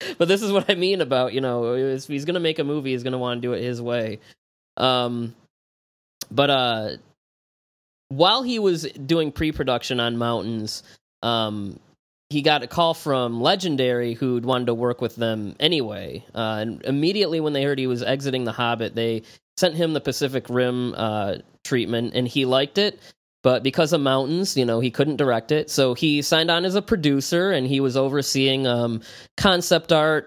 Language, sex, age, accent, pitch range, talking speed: English, male, 20-39, American, 120-145 Hz, 190 wpm